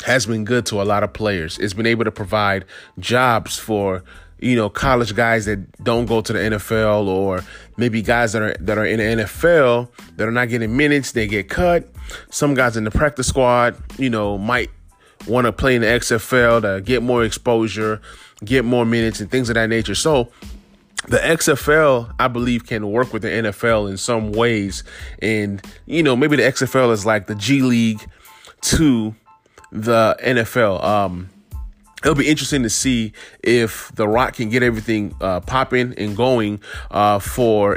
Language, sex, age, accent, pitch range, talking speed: English, male, 20-39, American, 105-125 Hz, 185 wpm